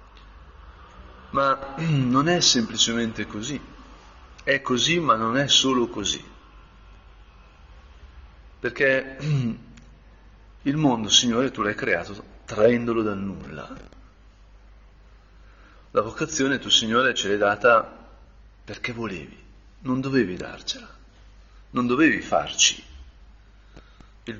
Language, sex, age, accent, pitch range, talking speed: Italian, male, 50-69, native, 85-125 Hz, 95 wpm